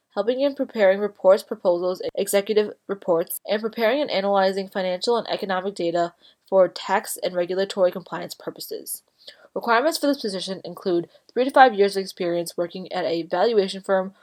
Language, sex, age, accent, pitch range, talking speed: English, female, 20-39, American, 180-220 Hz, 155 wpm